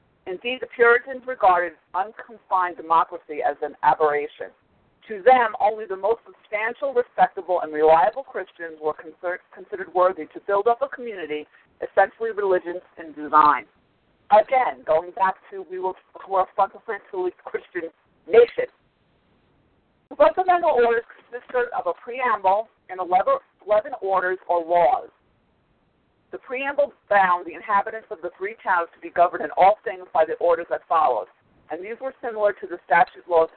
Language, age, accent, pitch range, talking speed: English, 50-69, American, 175-245 Hz, 150 wpm